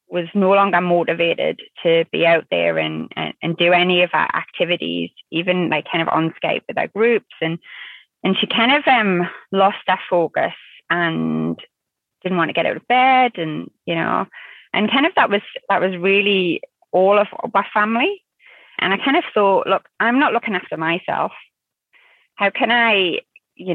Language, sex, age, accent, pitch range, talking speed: English, female, 20-39, British, 170-220 Hz, 180 wpm